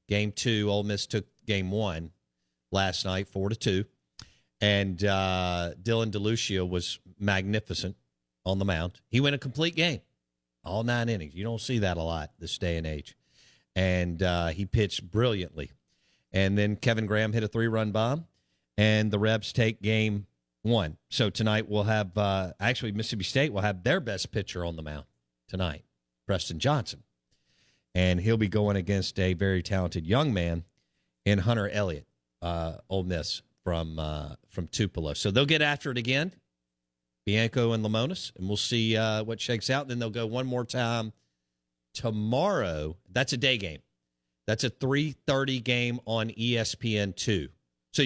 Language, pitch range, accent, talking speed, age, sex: English, 85-115 Hz, American, 165 wpm, 50-69, male